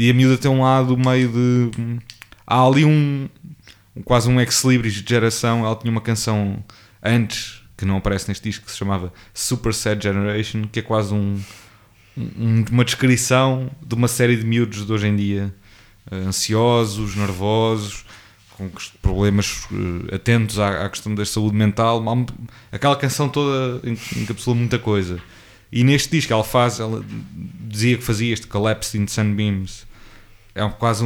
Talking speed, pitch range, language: 155 wpm, 105-120 Hz, English